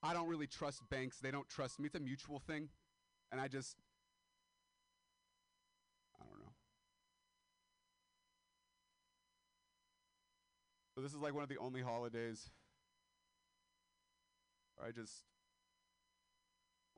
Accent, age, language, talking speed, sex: American, 30-49, English, 110 wpm, male